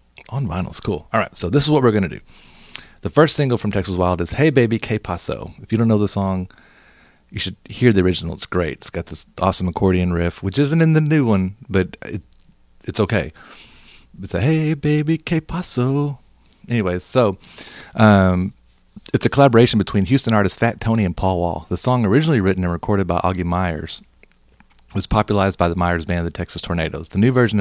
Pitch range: 90-115 Hz